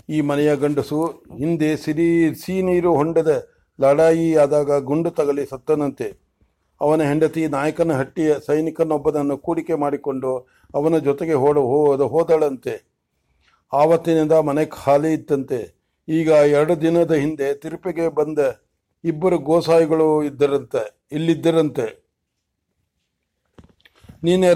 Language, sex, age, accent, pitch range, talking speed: English, male, 60-79, Indian, 140-165 Hz, 90 wpm